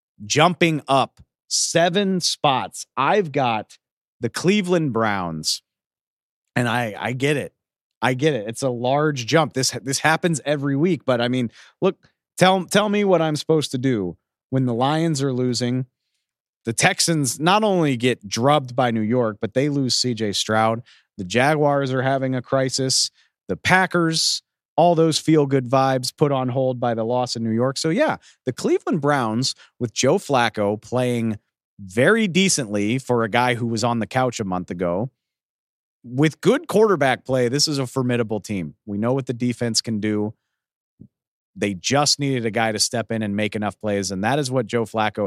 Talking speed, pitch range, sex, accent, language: 180 wpm, 115-155 Hz, male, American, English